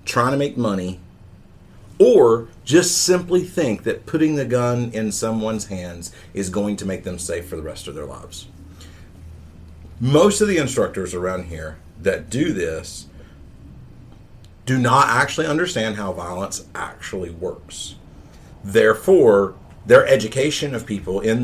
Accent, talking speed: American, 140 wpm